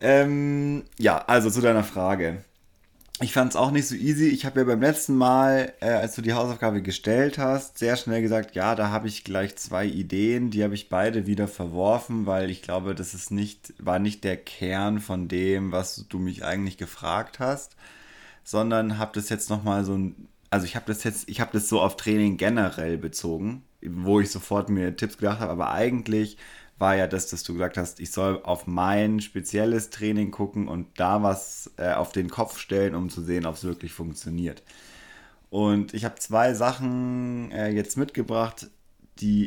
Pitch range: 95-115 Hz